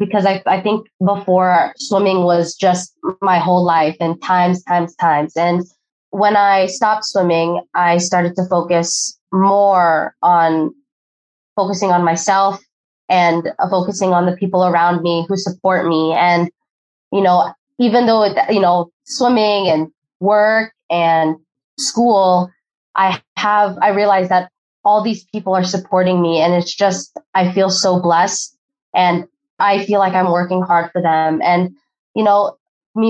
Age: 20-39